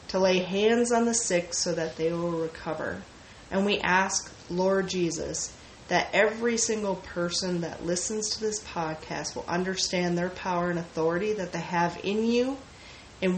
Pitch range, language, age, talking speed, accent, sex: 175-215 Hz, English, 30-49, 165 wpm, American, female